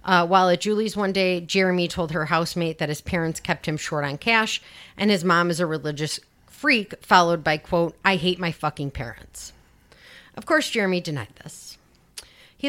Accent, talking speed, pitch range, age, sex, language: American, 185 wpm, 160-205 Hz, 40-59, female, English